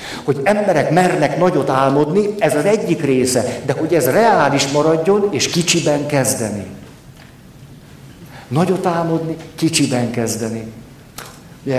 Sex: male